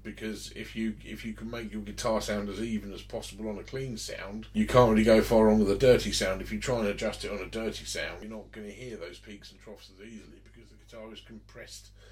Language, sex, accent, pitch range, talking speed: English, male, British, 100-120 Hz, 270 wpm